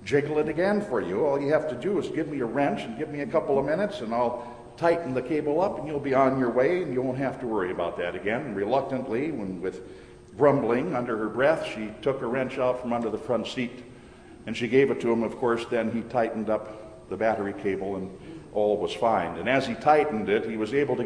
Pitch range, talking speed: 120-150 Hz, 250 wpm